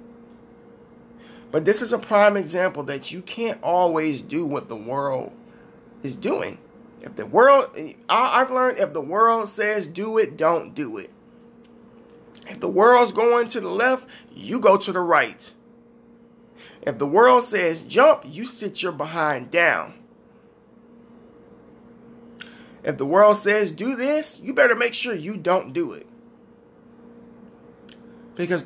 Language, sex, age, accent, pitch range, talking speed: English, male, 30-49, American, 210-240 Hz, 140 wpm